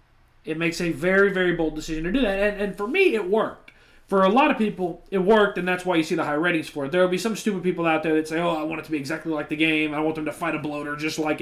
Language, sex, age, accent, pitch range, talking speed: English, male, 20-39, American, 150-180 Hz, 325 wpm